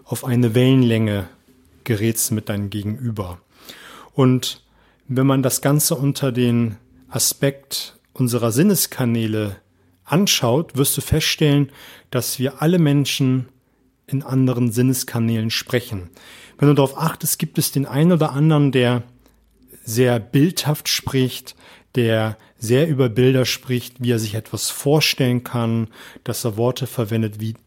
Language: German